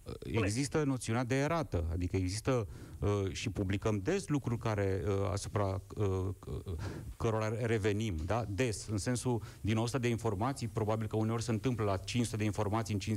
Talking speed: 165 wpm